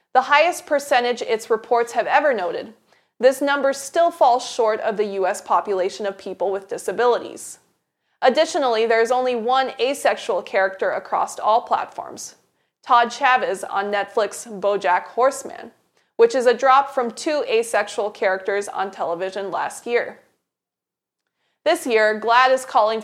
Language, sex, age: English, female, 20-39